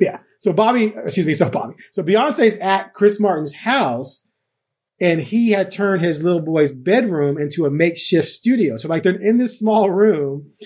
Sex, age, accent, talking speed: male, 30-49, American, 180 wpm